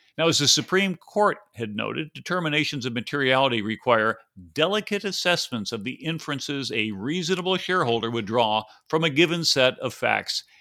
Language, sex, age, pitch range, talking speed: English, male, 50-69, 115-165 Hz, 155 wpm